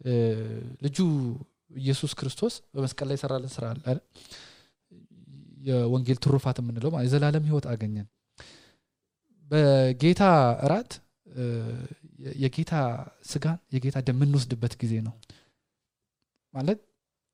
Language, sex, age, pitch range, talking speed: English, male, 20-39, 120-160 Hz, 85 wpm